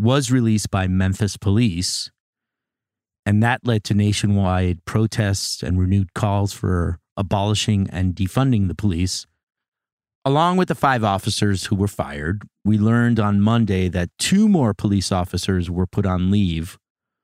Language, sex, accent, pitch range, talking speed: English, male, American, 95-110 Hz, 145 wpm